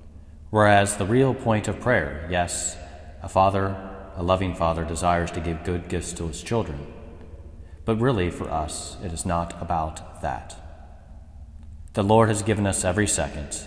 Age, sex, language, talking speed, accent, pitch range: 30-49, male, English, 160 wpm, American, 80-100 Hz